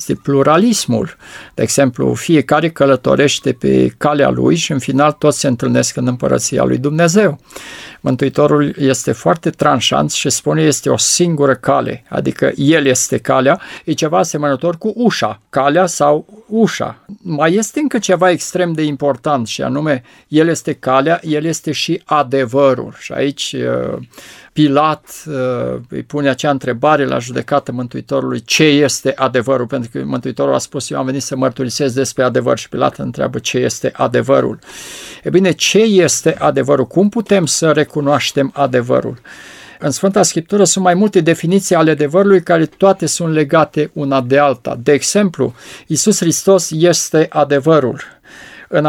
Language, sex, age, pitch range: Romanian, male, 50-69, 135-170 Hz